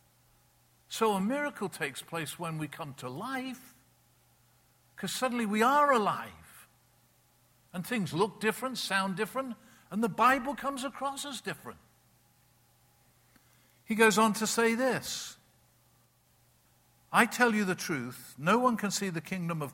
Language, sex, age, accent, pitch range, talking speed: English, male, 50-69, British, 155-230 Hz, 140 wpm